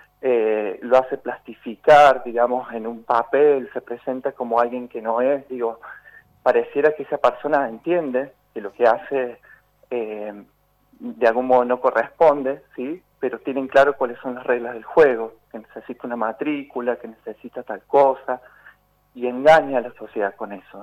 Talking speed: 160 wpm